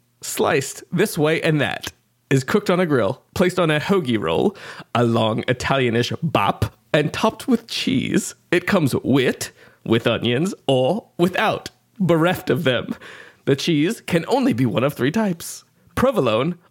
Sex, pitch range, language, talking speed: male, 115-175 Hz, English, 155 wpm